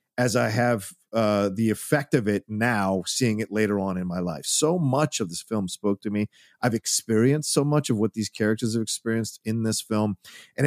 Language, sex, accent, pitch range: English, male, American, 110-140 Hz